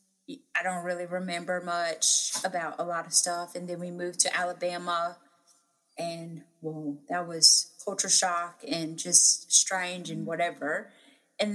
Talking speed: 145 wpm